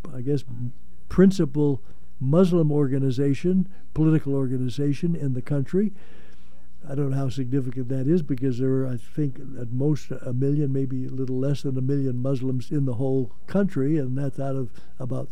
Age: 60-79